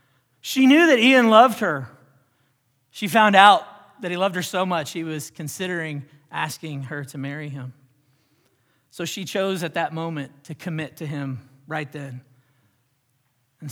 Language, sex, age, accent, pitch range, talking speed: English, male, 40-59, American, 135-180 Hz, 155 wpm